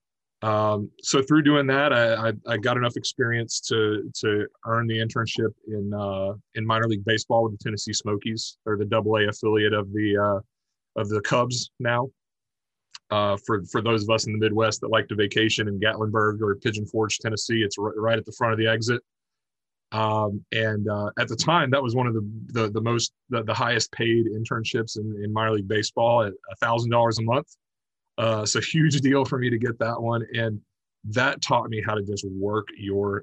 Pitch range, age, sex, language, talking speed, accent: 105-115 Hz, 30-49, male, English, 205 wpm, American